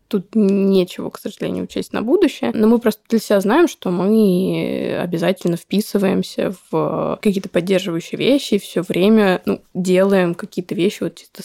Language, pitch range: Russian, 180-215 Hz